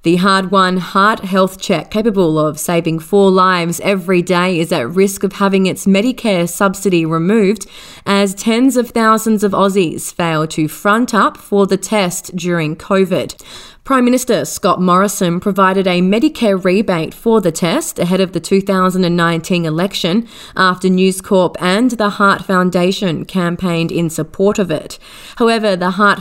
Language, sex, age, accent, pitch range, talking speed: English, female, 20-39, Australian, 180-210 Hz, 155 wpm